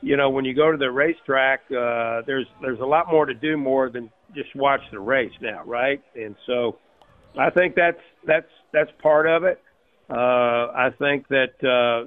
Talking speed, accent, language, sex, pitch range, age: 195 wpm, American, English, male, 125-155 Hz, 50-69